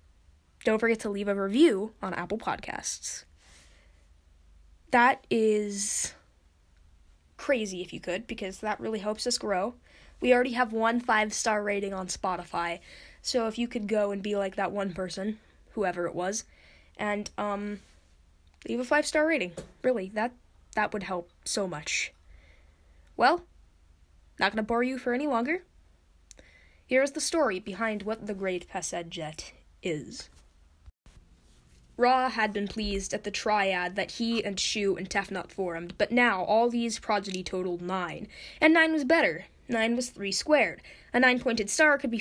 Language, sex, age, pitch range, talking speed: English, female, 10-29, 185-240 Hz, 155 wpm